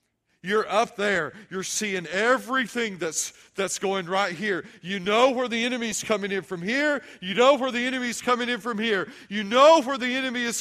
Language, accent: English, American